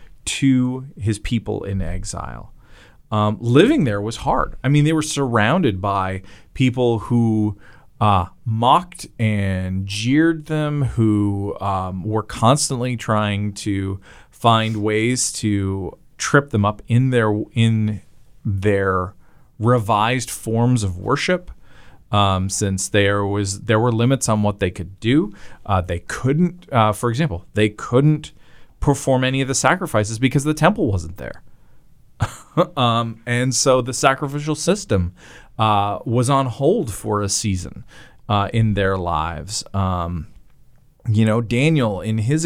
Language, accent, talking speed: English, American, 135 wpm